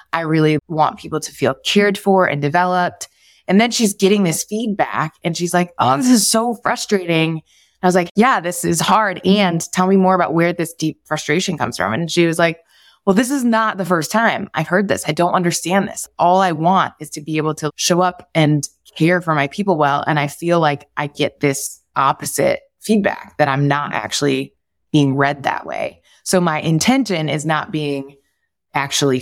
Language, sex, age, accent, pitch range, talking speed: English, female, 20-39, American, 150-185 Hz, 205 wpm